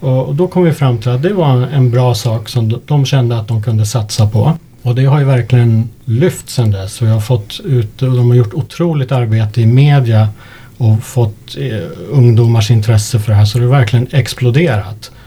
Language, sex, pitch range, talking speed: Swedish, male, 115-135 Hz, 185 wpm